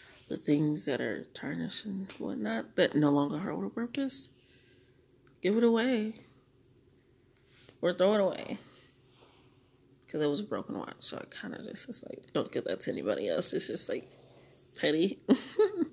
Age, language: 20-39, English